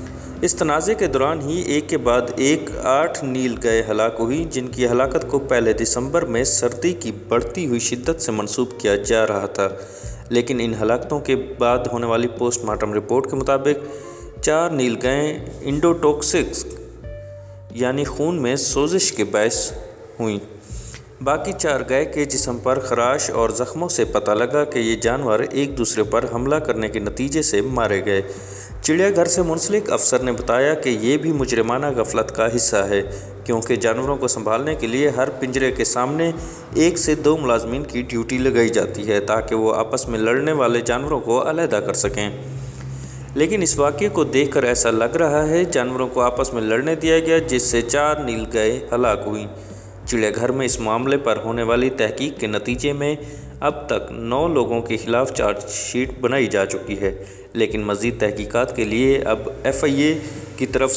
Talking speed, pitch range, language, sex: 180 wpm, 110-140 Hz, Urdu, male